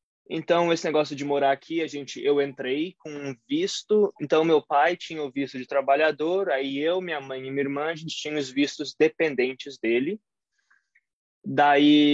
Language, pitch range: Portuguese, 130-155 Hz